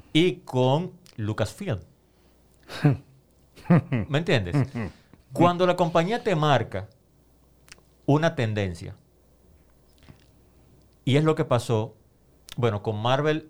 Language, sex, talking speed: Spanish, male, 95 wpm